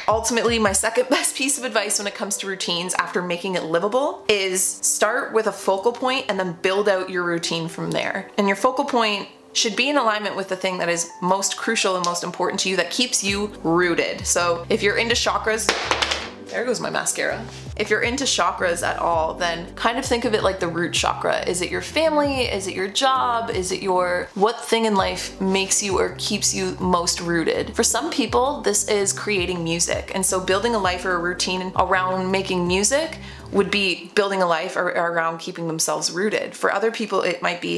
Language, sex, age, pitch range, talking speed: English, female, 20-39, 180-220 Hz, 215 wpm